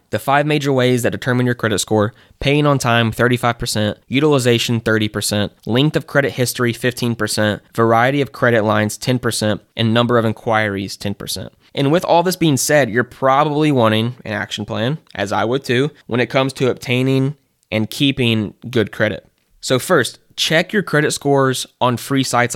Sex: male